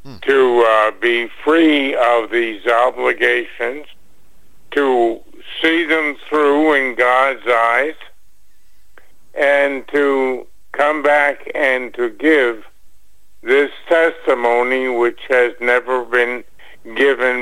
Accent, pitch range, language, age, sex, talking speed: American, 125-145 Hz, English, 60-79, male, 95 wpm